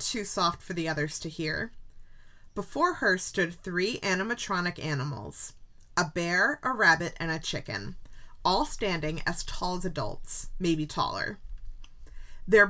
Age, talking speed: 20-39, 135 wpm